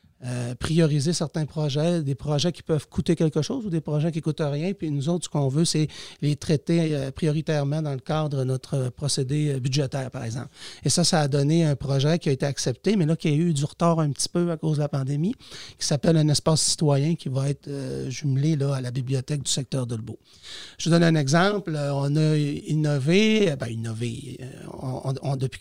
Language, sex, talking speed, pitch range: French, male, 230 wpm, 140-170 Hz